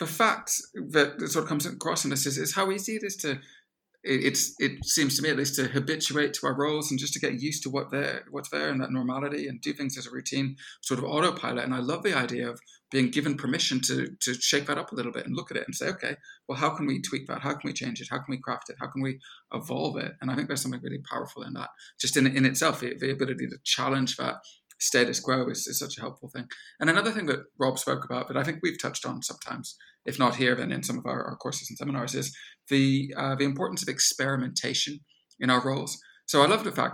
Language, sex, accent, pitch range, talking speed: English, male, British, 130-145 Hz, 265 wpm